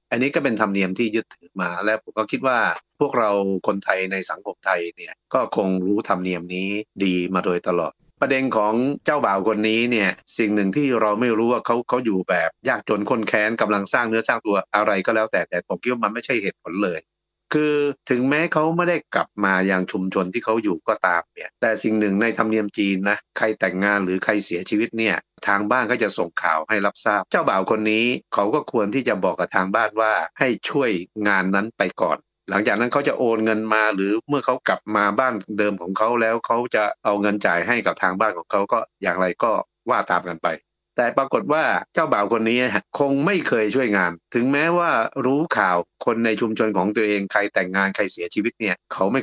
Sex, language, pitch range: male, Thai, 100-125 Hz